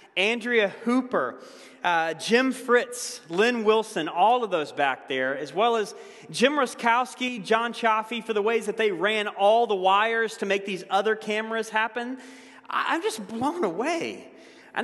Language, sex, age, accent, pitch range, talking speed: English, male, 30-49, American, 190-250 Hz, 160 wpm